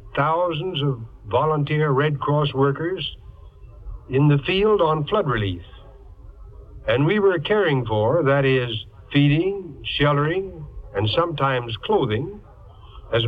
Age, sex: 60-79, male